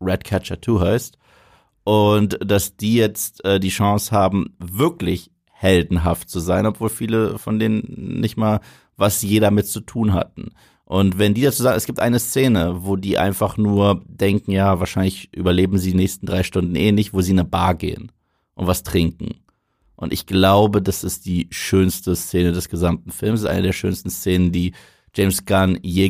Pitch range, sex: 90-110 Hz, male